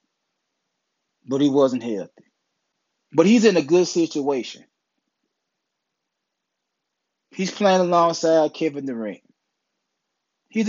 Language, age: English, 20-39